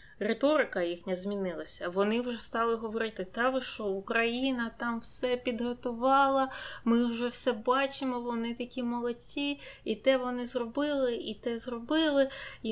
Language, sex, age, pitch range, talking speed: Ukrainian, female, 20-39, 200-255 Hz, 135 wpm